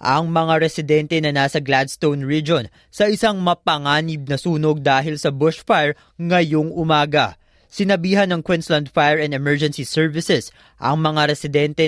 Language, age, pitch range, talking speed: Filipino, 20-39, 135-170 Hz, 135 wpm